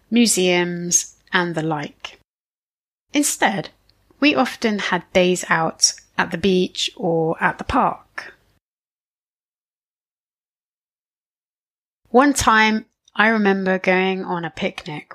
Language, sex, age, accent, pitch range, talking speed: English, female, 30-49, British, 175-225 Hz, 100 wpm